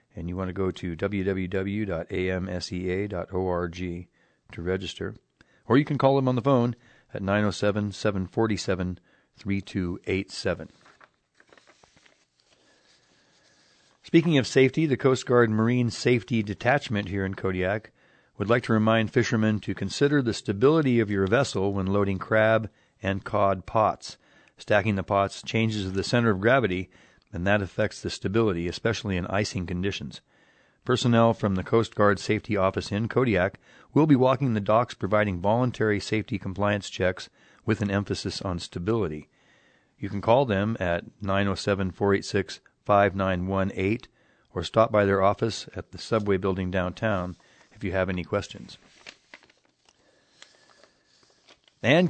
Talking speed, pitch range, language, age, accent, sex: 130 wpm, 95-115 Hz, English, 40-59, American, male